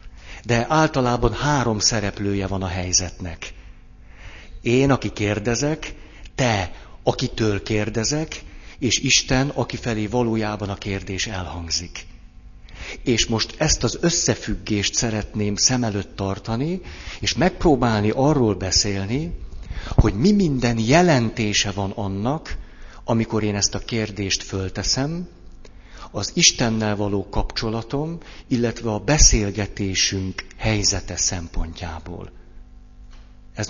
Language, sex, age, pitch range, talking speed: Hungarian, male, 60-79, 95-120 Hz, 100 wpm